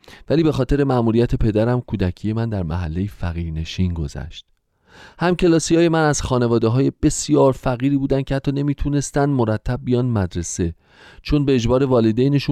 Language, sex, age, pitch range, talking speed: Persian, male, 40-59, 95-135 Hz, 150 wpm